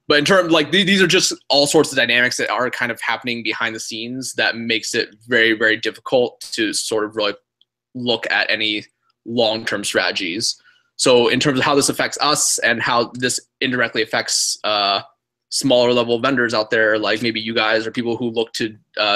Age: 20-39